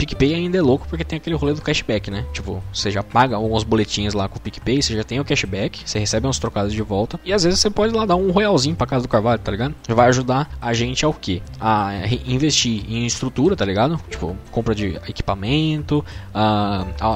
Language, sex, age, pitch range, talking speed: Portuguese, male, 10-29, 105-135 Hz, 240 wpm